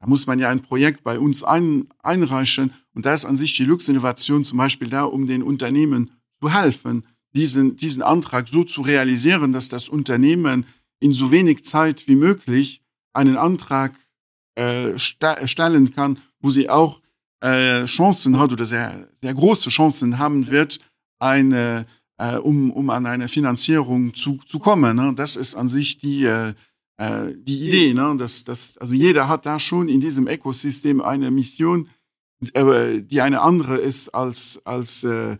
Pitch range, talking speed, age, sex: 125-150 Hz, 165 wpm, 50-69, male